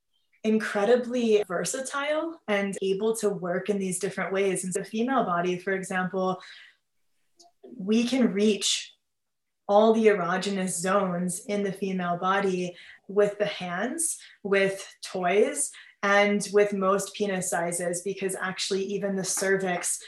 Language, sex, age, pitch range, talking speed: English, female, 20-39, 185-205 Hz, 130 wpm